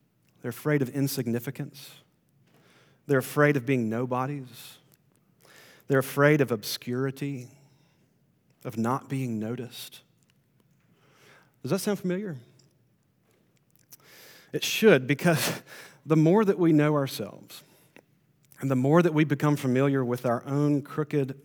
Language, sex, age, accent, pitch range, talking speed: English, male, 40-59, American, 135-170 Hz, 115 wpm